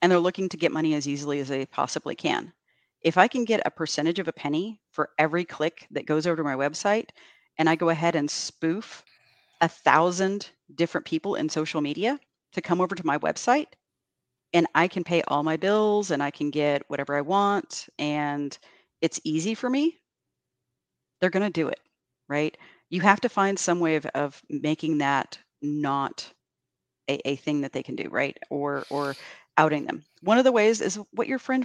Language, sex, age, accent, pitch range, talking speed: English, female, 40-59, American, 155-220 Hz, 195 wpm